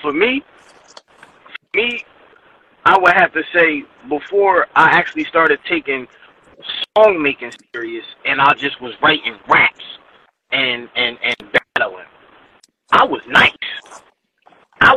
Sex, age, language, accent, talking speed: male, 20-39, English, American, 125 wpm